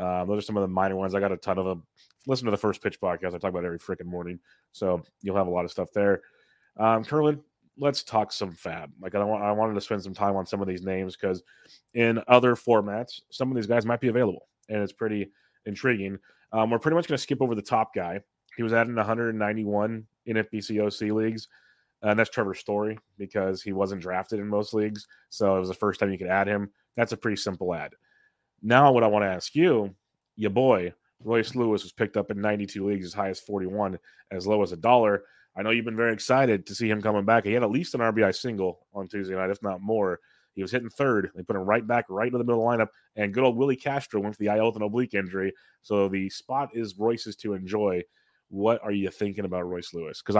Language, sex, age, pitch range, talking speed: English, male, 30-49, 100-115 Hz, 250 wpm